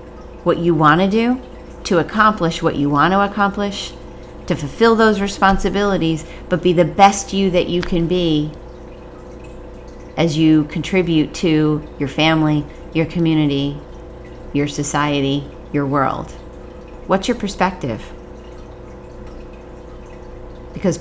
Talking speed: 110 wpm